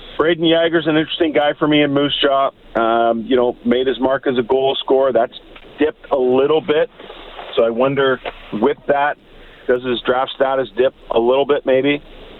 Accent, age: American, 40-59